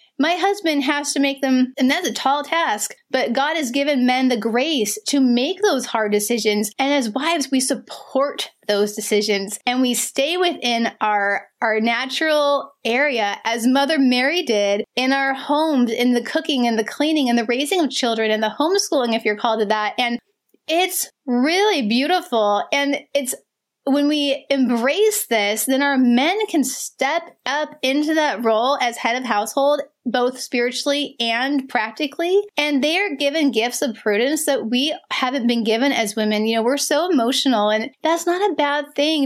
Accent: American